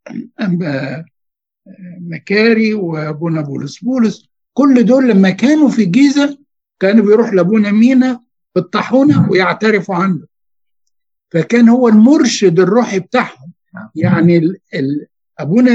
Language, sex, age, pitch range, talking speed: Arabic, male, 60-79, 175-245 Hz, 90 wpm